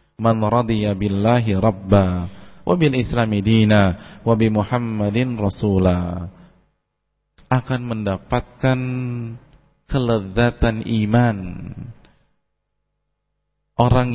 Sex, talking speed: male, 55 wpm